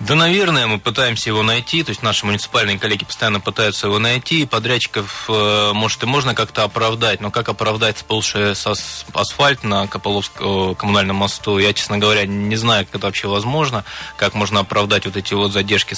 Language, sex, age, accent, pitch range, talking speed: Russian, male, 20-39, native, 100-115 Hz, 175 wpm